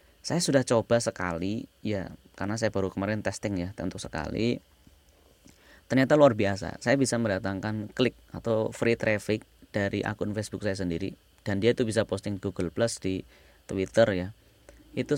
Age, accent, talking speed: 20-39, Indonesian, 155 wpm